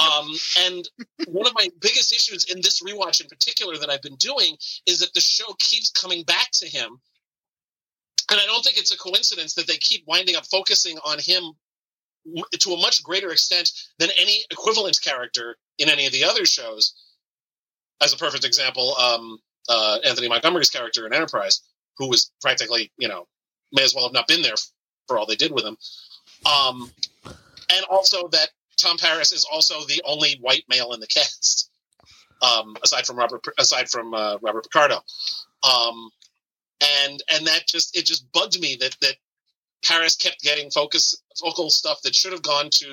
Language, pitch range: English, 140-185 Hz